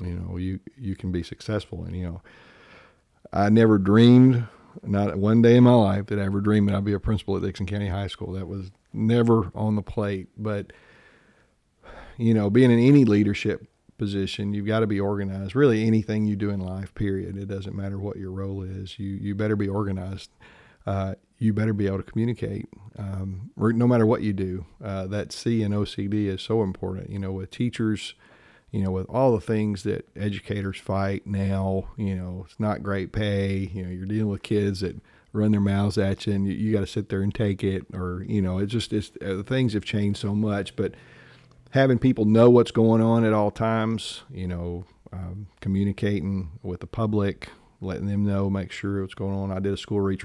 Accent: American